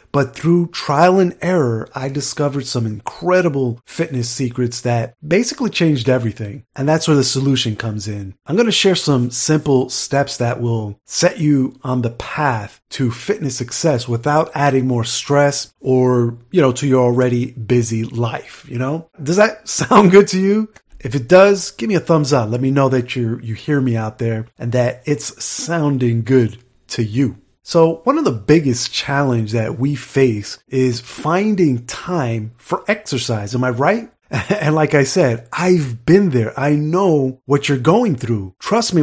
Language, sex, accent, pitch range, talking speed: English, male, American, 120-160 Hz, 180 wpm